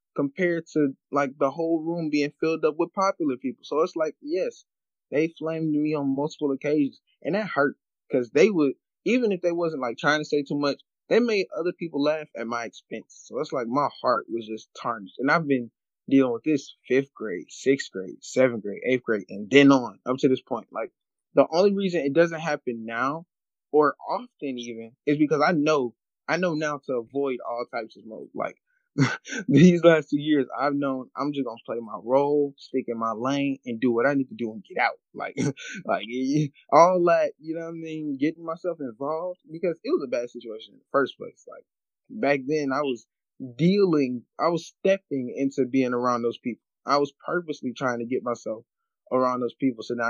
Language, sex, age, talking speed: English, male, 20-39, 210 wpm